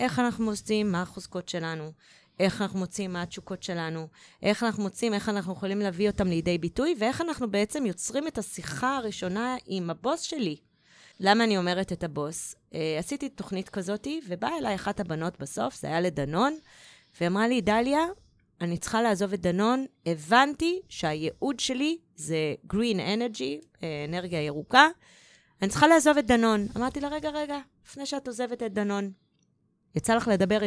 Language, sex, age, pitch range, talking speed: Hebrew, female, 20-39, 185-275 Hz, 160 wpm